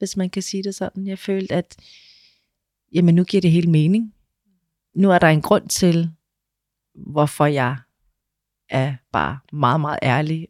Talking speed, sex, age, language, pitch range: 160 wpm, female, 30-49, Danish, 140-180 Hz